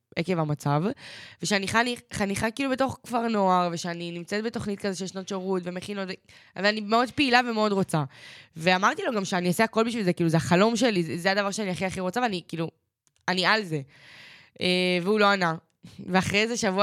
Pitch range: 165-205 Hz